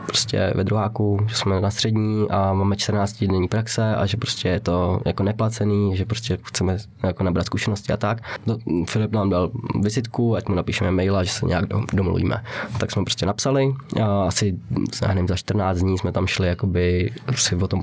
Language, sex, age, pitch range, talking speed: Czech, male, 20-39, 95-110 Hz, 190 wpm